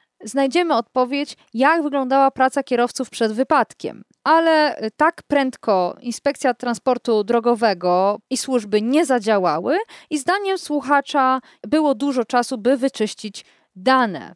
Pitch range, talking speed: 230-300 Hz, 115 wpm